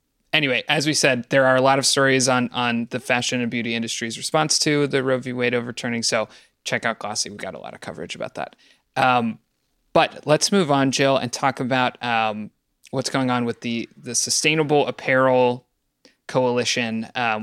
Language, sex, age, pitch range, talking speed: English, male, 20-39, 115-135 Hz, 195 wpm